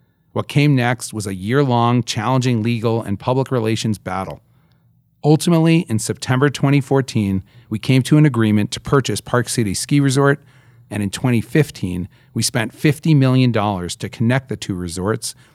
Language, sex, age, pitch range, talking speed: English, male, 40-59, 105-135 Hz, 150 wpm